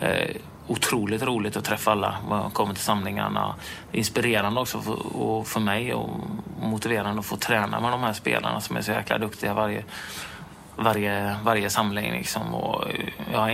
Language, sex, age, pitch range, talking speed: English, male, 30-49, 100-110 Hz, 160 wpm